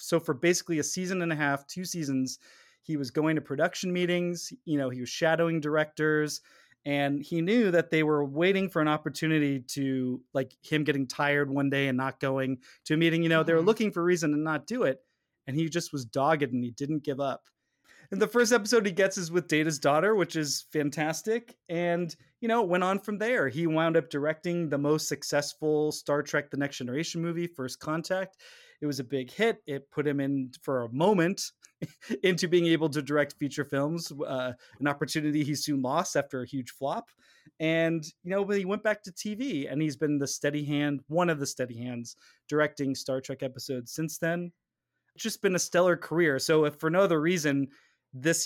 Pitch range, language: 140-170 Hz, English